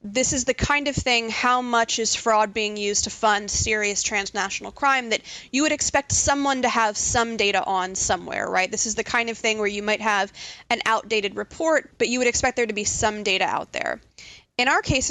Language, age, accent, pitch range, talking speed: English, 20-39, American, 205-240 Hz, 225 wpm